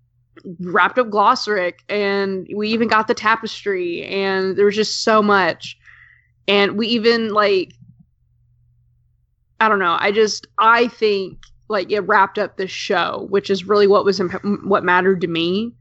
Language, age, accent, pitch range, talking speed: English, 20-39, American, 180-210 Hz, 160 wpm